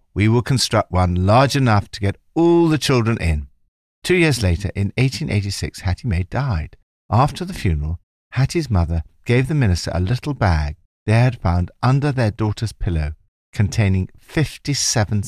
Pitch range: 85-125 Hz